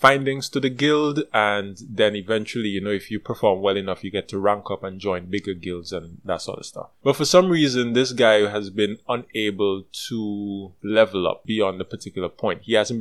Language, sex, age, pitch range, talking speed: English, male, 20-39, 100-120 Hz, 210 wpm